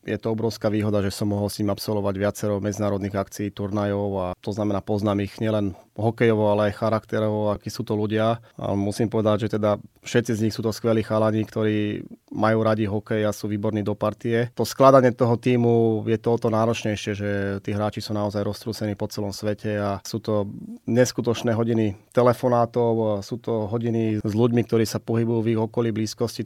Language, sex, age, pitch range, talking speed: Slovak, male, 30-49, 105-115 Hz, 190 wpm